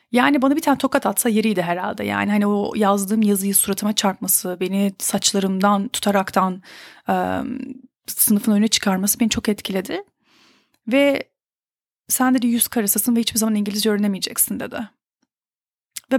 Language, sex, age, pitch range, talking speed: Turkish, female, 30-49, 200-255 Hz, 135 wpm